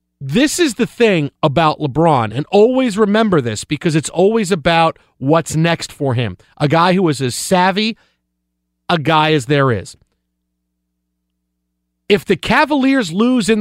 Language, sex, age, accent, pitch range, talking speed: English, male, 40-59, American, 140-195 Hz, 150 wpm